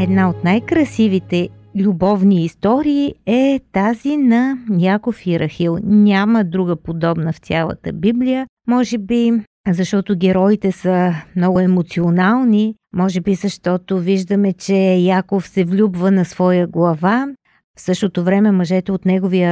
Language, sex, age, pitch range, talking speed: Bulgarian, female, 50-69, 175-230 Hz, 125 wpm